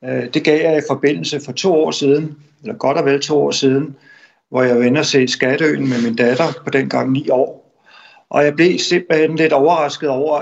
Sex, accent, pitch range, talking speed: male, native, 140-175 Hz, 205 wpm